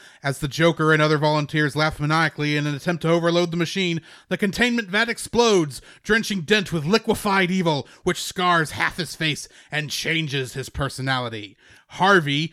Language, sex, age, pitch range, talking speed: English, male, 30-49, 155-210 Hz, 165 wpm